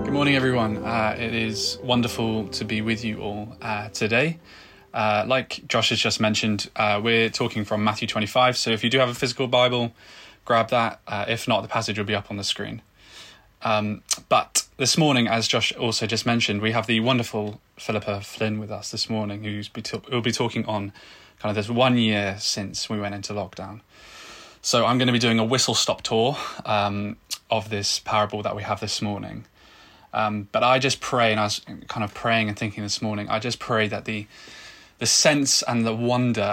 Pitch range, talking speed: 105-115 Hz, 205 wpm